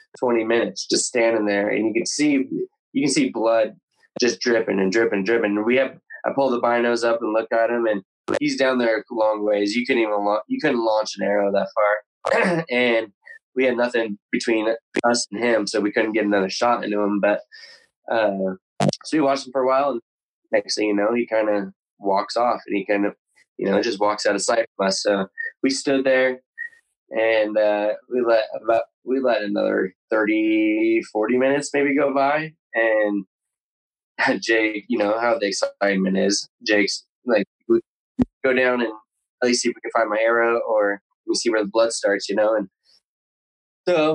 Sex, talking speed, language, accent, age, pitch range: male, 200 wpm, English, American, 20-39, 105-140 Hz